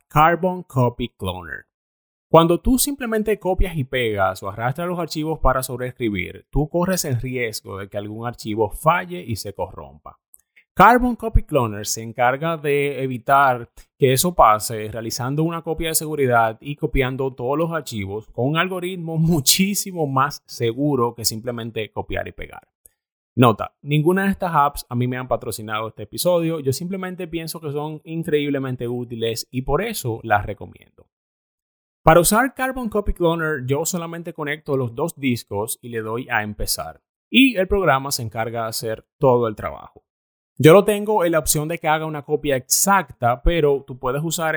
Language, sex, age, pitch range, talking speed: Spanish, male, 30-49, 115-165 Hz, 165 wpm